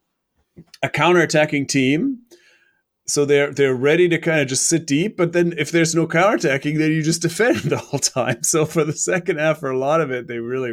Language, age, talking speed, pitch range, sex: English, 30-49, 205 wpm, 130-170 Hz, male